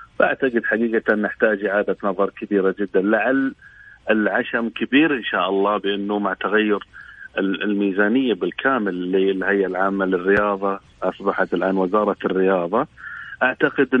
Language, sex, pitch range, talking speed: English, male, 95-115 Hz, 115 wpm